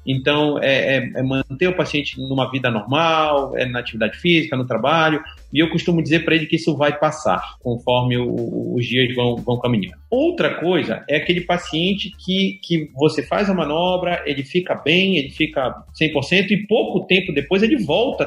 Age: 40-59